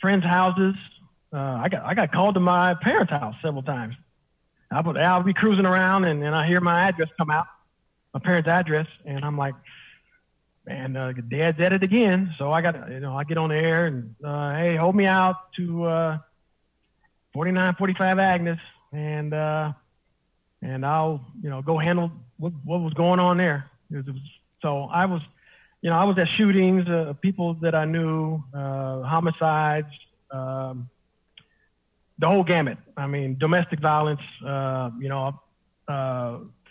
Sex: male